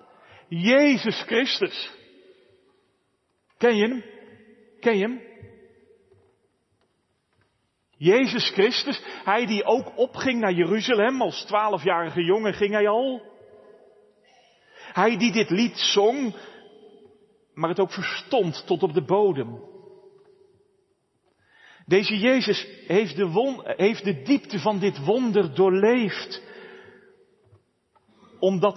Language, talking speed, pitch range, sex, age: Dutch, 95 wpm, 180-240 Hz, male, 40-59